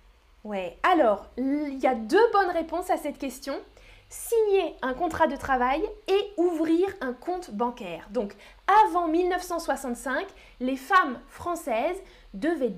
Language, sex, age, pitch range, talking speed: French, female, 10-29, 245-355 Hz, 130 wpm